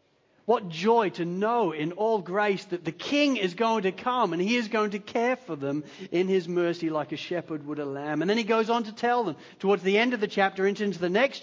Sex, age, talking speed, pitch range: male, 40-59, 250 wpm, 165-230 Hz